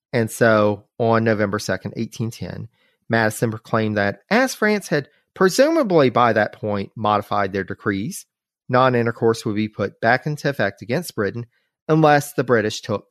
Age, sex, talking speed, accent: 40-59, male, 145 wpm, American